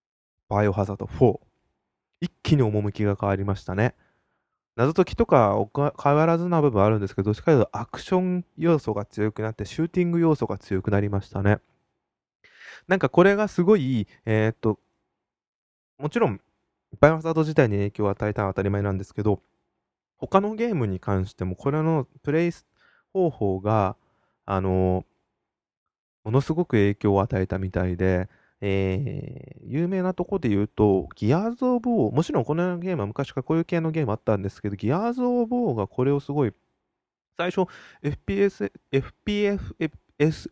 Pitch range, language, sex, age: 100-165 Hz, Japanese, male, 20-39